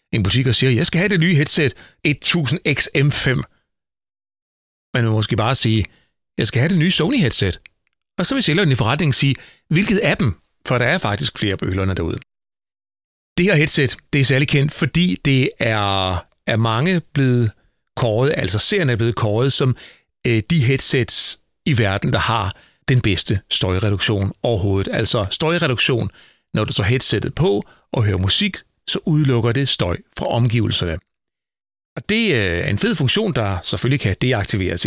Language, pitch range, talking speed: Danish, 110-155 Hz, 165 wpm